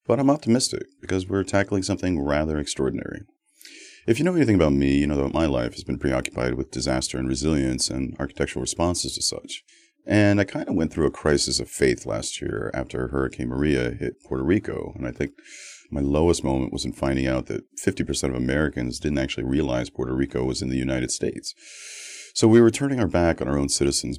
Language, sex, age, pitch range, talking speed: English, male, 40-59, 65-95 Hz, 210 wpm